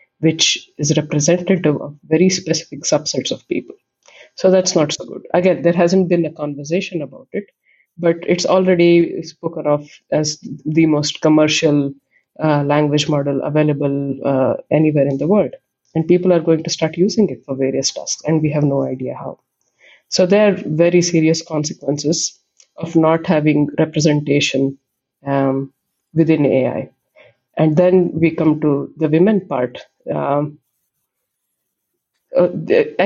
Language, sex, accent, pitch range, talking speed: Swedish, female, Indian, 150-170 Hz, 145 wpm